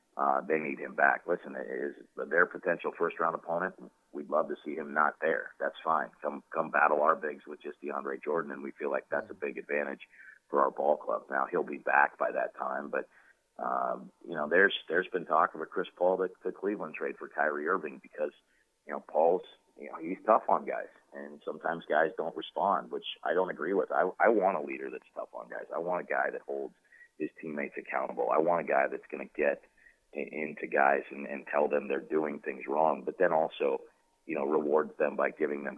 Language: English